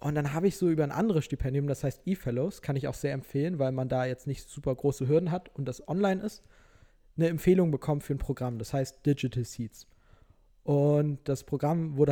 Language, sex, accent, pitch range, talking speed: German, male, German, 135-160 Hz, 220 wpm